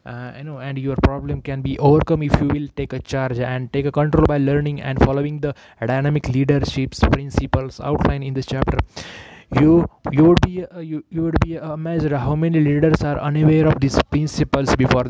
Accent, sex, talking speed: Indian, male, 200 wpm